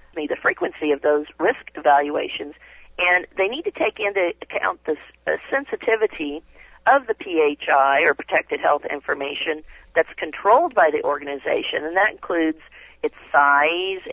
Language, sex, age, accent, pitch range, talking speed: English, female, 40-59, American, 150-195 Hz, 145 wpm